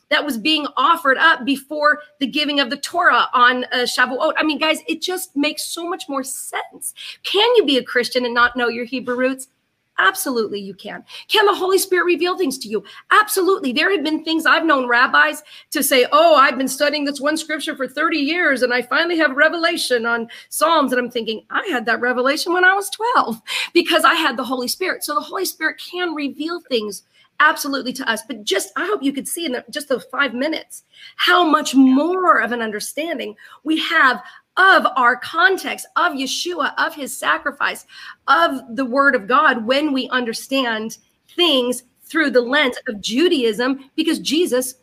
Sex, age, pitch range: female, 40-59, 255-335 Hz